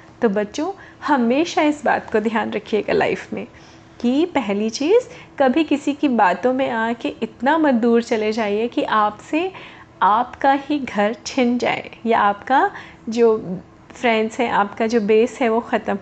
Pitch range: 225-280 Hz